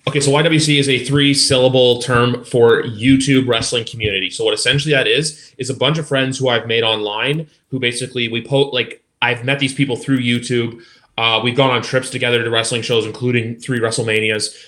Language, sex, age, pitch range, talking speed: English, male, 20-39, 115-140 Hz, 195 wpm